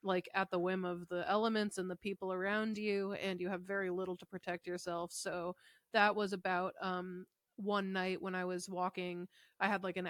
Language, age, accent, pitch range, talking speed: English, 20-39, American, 175-195 Hz, 210 wpm